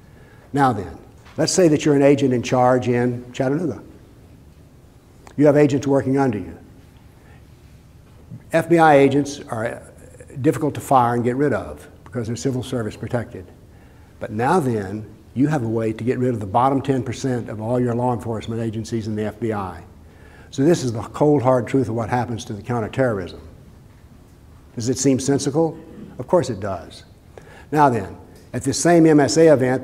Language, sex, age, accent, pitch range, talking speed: English, male, 60-79, American, 110-140 Hz, 170 wpm